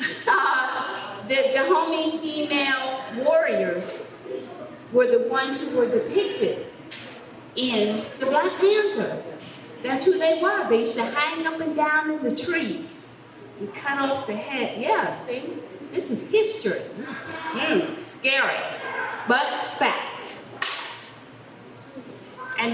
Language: English